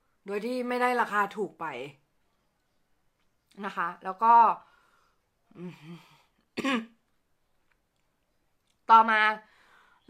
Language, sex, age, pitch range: Thai, female, 20-39, 190-245 Hz